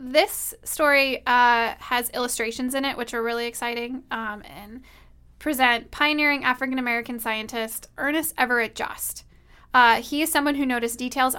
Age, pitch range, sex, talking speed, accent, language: 10-29, 230-265 Hz, female, 135 wpm, American, English